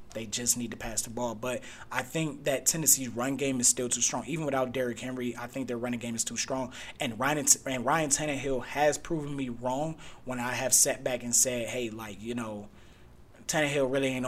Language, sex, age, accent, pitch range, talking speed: English, male, 20-39, American, 115-135 Hz, 225 wpm